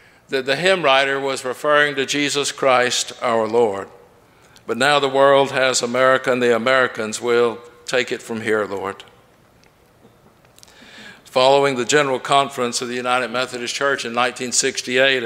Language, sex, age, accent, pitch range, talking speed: English, male, 60-79, American, 120-150 Hz, 145 wpm